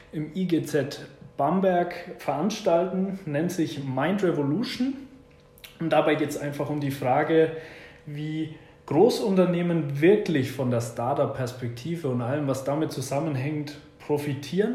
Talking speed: 115 wpm